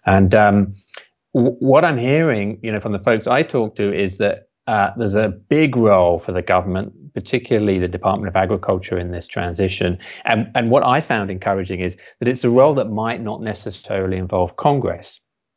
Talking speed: 190 wpm